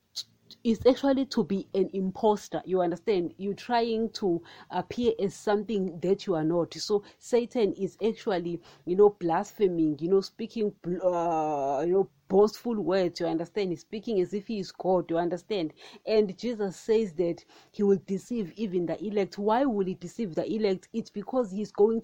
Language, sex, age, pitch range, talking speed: English, female, 30-49, 175-220 Hz, 175 wpm